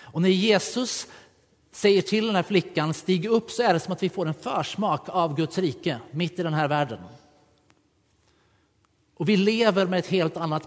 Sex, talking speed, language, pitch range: male, 190 wpm, Swedish, 145-185 Hz